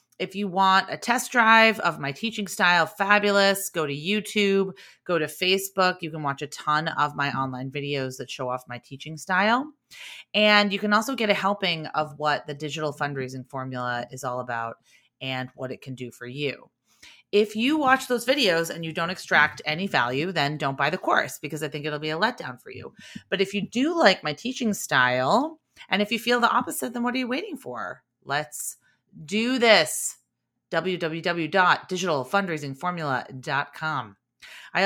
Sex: female